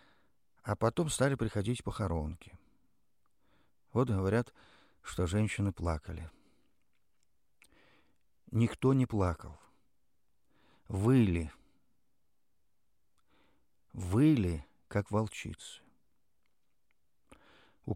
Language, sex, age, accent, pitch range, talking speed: Russian, male, 50-69, native, 85-115 Hz, 60 wpm